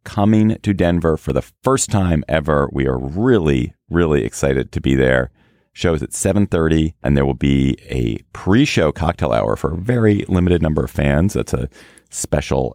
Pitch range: 70-95 Hz